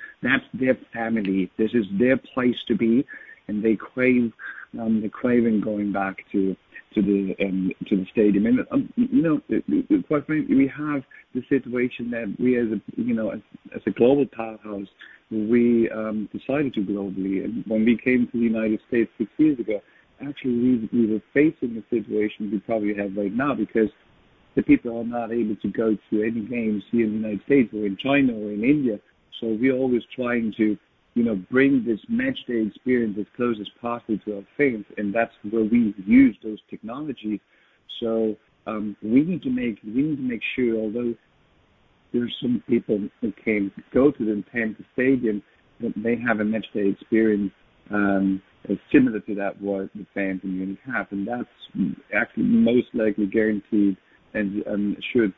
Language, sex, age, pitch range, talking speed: English, male, 50-69, 105-125 Hz, 185 wpm